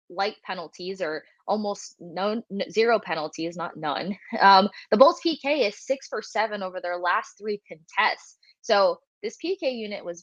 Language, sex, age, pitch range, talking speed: English, female, 20-39, 175-205 Hz, 160 wpm